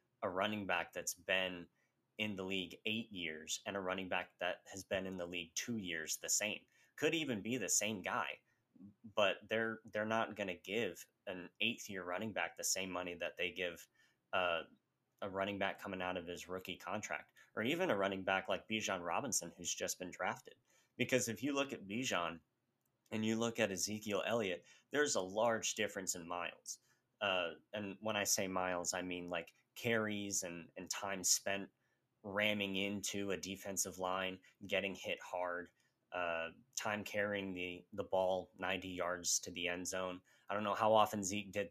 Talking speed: 185 wpm